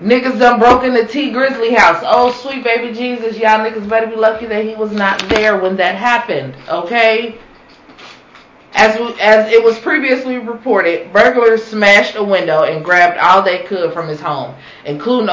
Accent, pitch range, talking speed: American, 165-225 Hz, 180 wpm